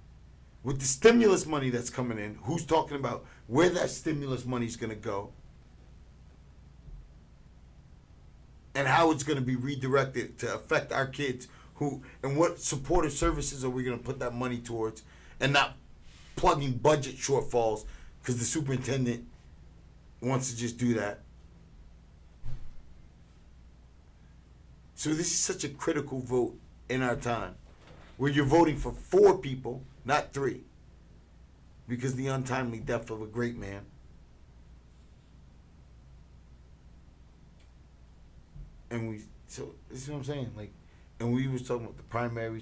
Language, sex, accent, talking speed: English, male, American, 135 wpm